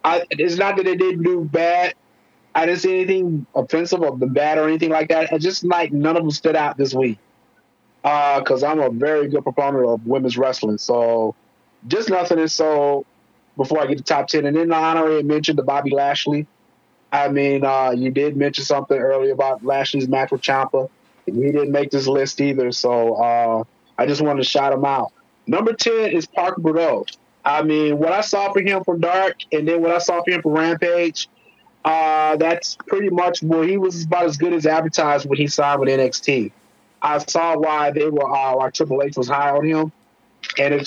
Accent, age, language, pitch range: American, 20-39, English, 135-165 Hz